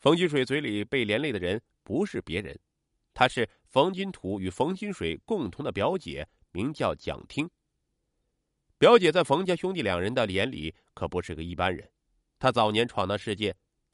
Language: Chinese